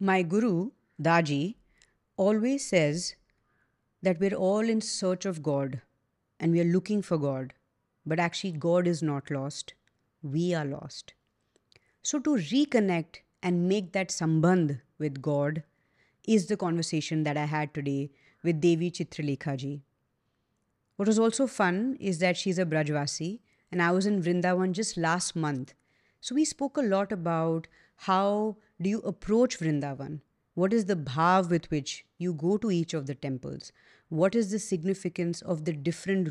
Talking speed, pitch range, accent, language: 155 wpm, 155-195 Hz, Indian, English